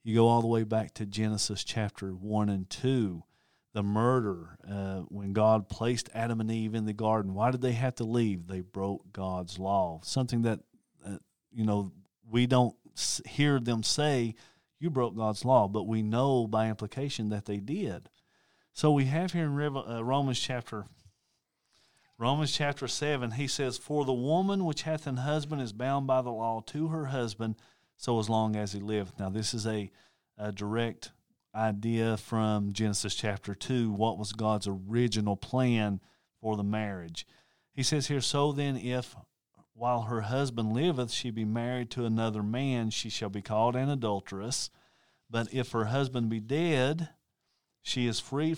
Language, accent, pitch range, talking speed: English, American, 105-130 Hz, 170 wpm